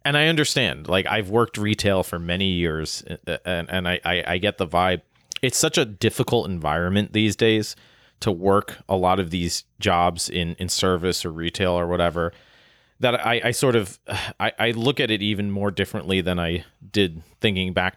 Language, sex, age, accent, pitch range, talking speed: English, male, 30-49, American, 90-115 Hz, 190 wpm